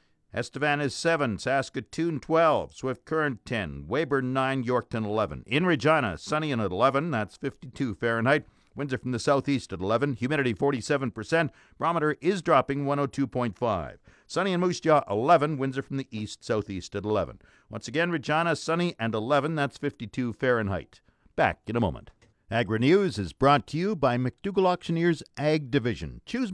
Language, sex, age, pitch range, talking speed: English, male, 50-69, 115-155 Hz, 160 wpm